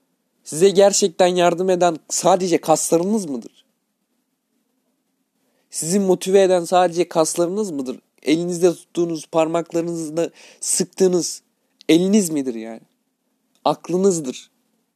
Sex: male